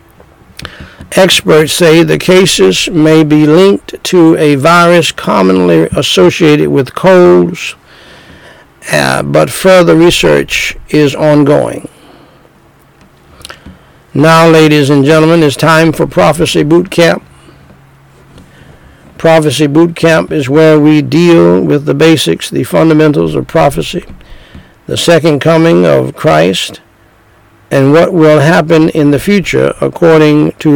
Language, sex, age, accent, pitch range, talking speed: English, male, 60-79, American, 140-165 Hz, 115 wpm